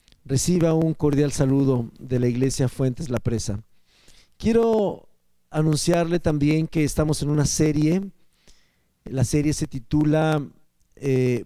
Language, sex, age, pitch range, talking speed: Spanish, male, 50-69, 135-170 Hz, 120 wpm